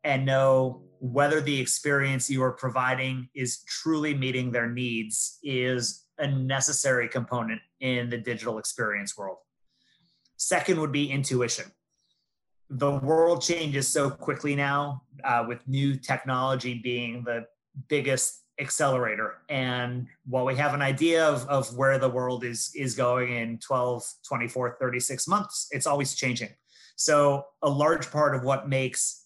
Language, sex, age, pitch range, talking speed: English, male, 30-49, 125-140 Hz, 140 wpm